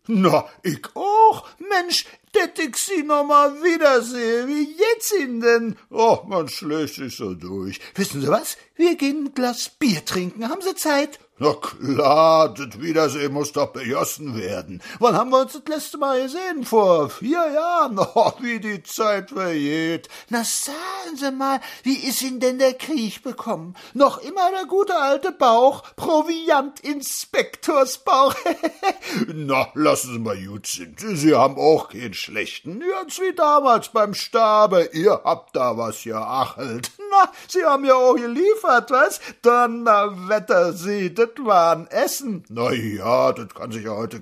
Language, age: German, 60-79